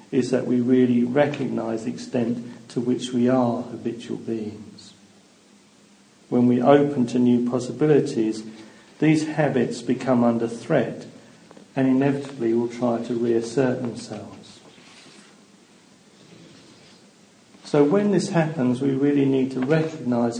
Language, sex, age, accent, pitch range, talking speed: English, male, 50-69, British, 120-135 Hz, 120 wpm